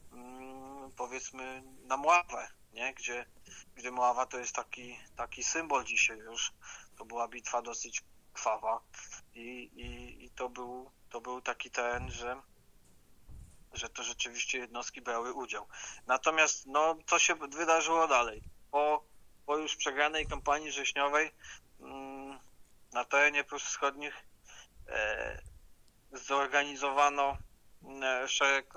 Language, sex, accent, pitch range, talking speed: Polish, male, native, 125-140 Hz, 110 wpm